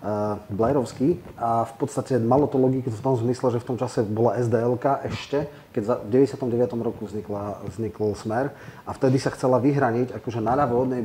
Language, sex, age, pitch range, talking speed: Slovak, male, 30-49, 105-125 Hz, 185 wpm